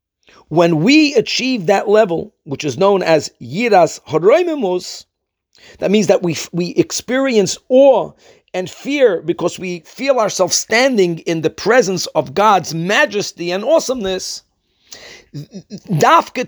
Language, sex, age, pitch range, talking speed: English, male, 50-69, 180-250 Hz, 125 wpm